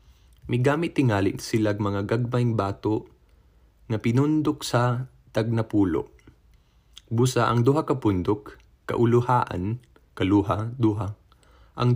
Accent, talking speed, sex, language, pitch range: native, 85 wpm, male, Filipino, 100-130 Hz